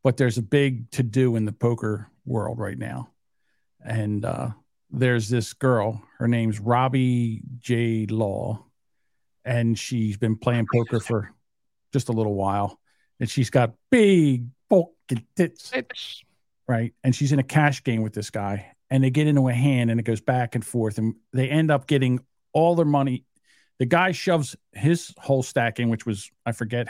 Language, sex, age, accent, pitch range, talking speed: English, male, 50-69, American, 115-145 Hz, 175 wpm